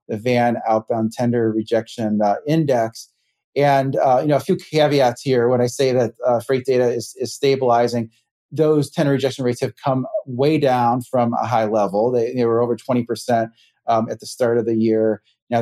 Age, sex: 30-49, male